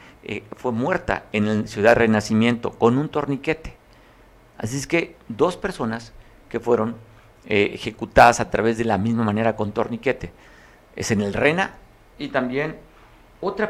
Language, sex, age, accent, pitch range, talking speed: Spanish, male, 50-69, Mexican, 105-130 Hz, 150 wpm